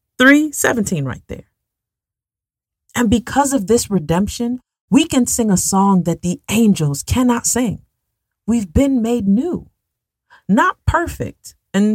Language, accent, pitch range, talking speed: English, American, 145-220 Hz, 125 wpm